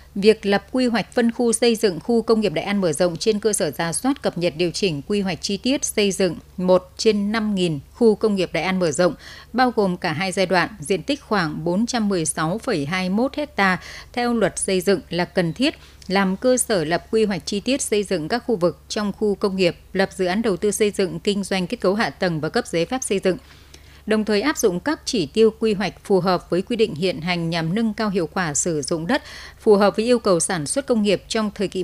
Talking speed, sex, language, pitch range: 245 wpm, female, Vietnamese, 180-220 Hz